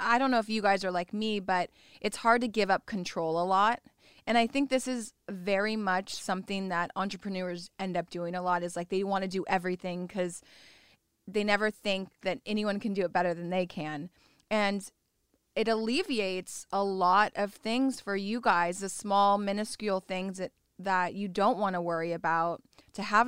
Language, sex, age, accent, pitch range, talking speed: English, female, 20-39, American, 180-210 Hz, 200 wpm